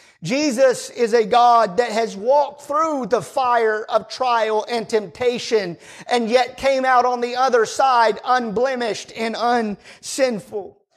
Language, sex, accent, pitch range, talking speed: English, male, American, 225-275 Hz, 135 wpm